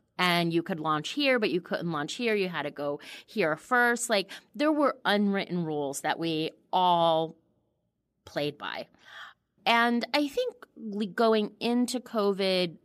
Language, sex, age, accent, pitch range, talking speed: English, female, 30-49, American, 160-215 Hz, 150 wpm